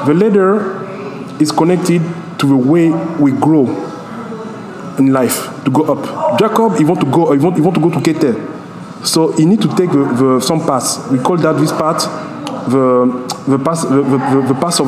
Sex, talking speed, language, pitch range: male, 190 wpm, English, 145-190 Hz